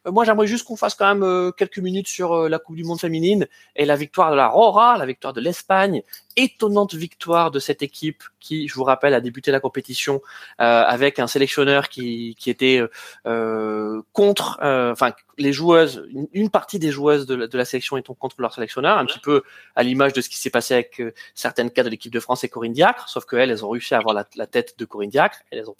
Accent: French